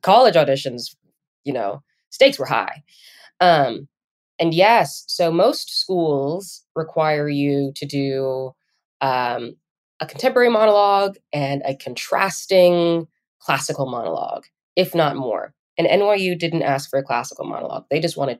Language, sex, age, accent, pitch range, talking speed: English, female, 20-39, American, 140-175 Hz, 130 wpm